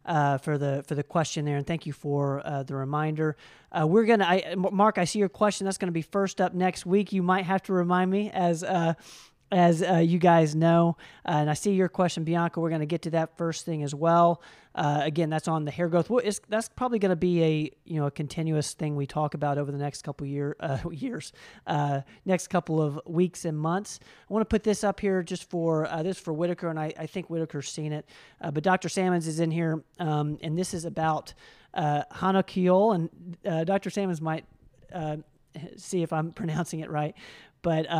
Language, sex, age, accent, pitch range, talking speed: English, male, 40-59, American, 150-180 Hz, 230 wpm